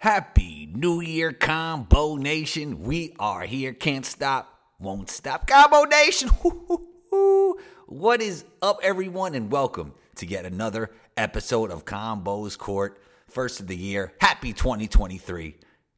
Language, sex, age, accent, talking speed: English, male, 30-49, American, 125 wpm